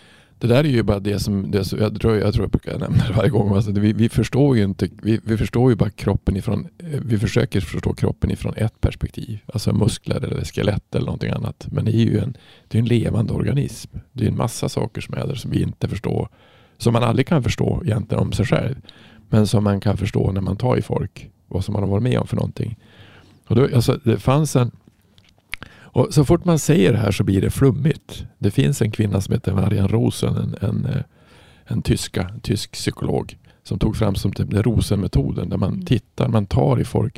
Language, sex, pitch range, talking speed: Swedish, male, 105-125 Hz, 230 wpm